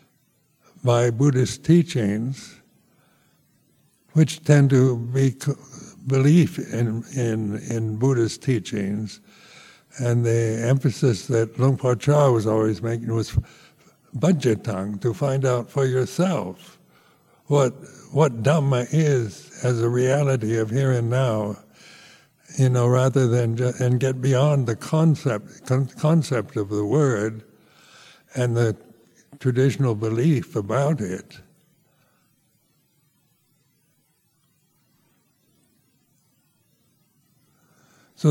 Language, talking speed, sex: English, 95 wpm, male